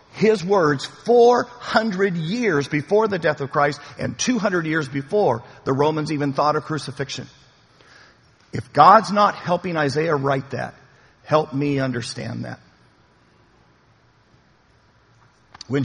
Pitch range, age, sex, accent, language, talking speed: 145-200 Hz, 50-69, male, American, English, 125 wpm